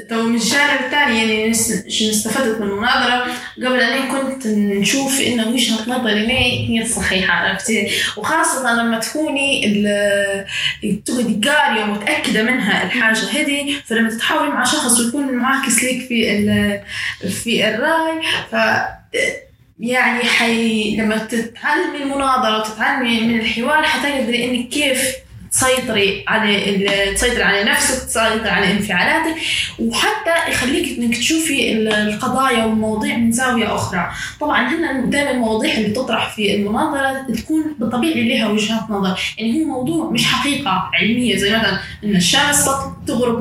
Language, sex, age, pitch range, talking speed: Arabic, female, 10-29, 220-275 Hz, 130 wpm